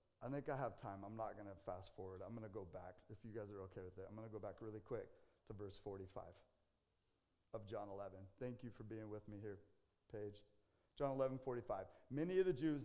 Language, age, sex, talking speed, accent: English, 40-59, male, 240 wpm, American